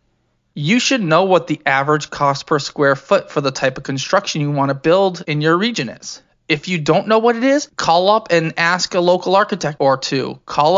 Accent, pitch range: American, 140-165 Hz